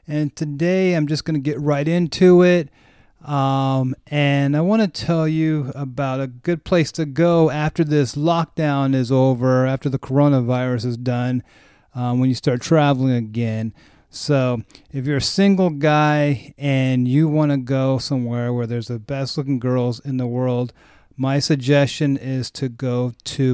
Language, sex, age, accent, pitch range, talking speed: English, male, 30-49, American, 125-150 Hz, 170 wpm